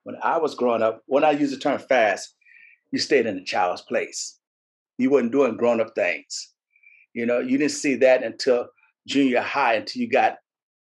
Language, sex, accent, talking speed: English, male, American, 190 wpm